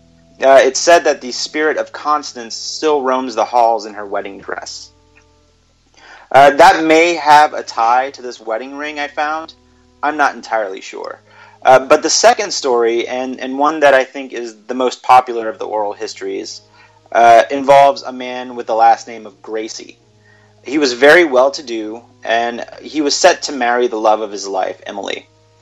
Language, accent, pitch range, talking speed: English, American, 110-140 Hz, 180 wpm